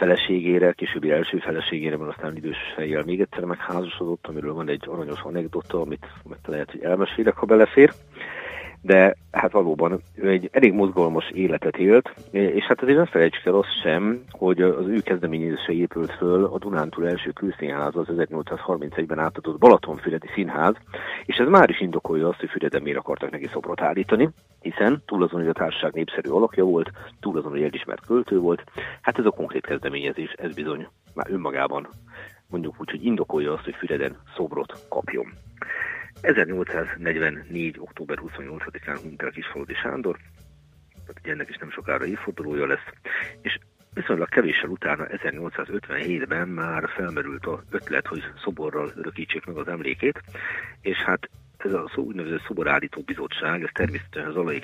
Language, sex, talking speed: Hungarian, male, 150 wpm